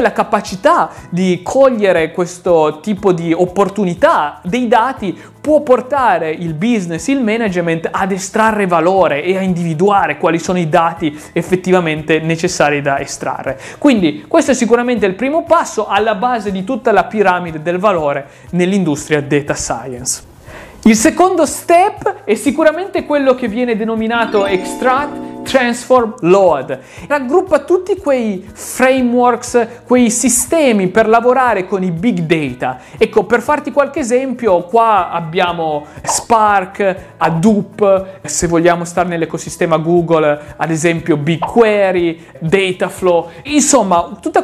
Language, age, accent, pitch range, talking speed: Italian, 30-49, native, 170-250 Hz, 125 wpm